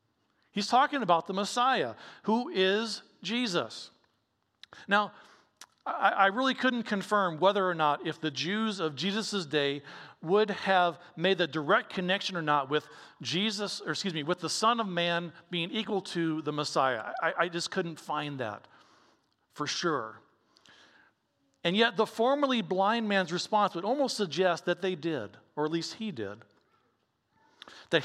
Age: 50-69